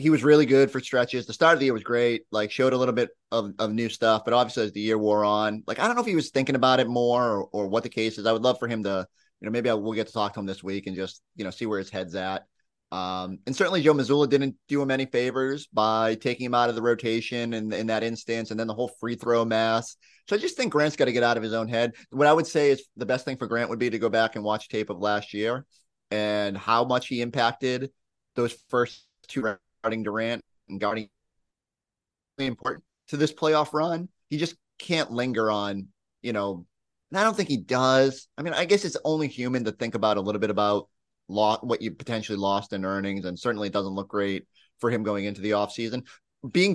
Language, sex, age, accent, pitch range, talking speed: English, male, 30-49, American, 105-130 Hz, 260 wpm